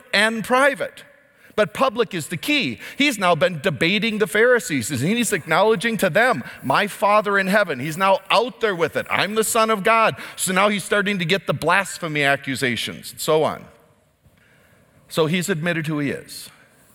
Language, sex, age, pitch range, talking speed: English, male, 50-69, 160-220 Hz, 175 wpm